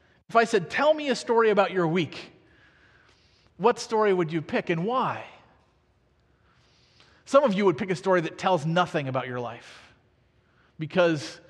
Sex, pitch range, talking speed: male, 160-230 Hz, 160 wpm